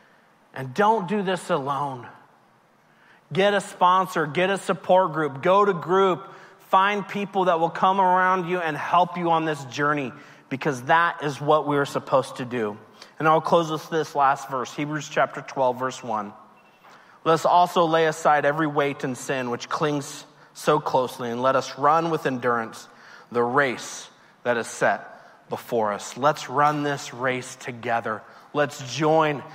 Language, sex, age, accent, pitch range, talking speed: English, male, 30-49, American, 130-165 Hz, 165 wpm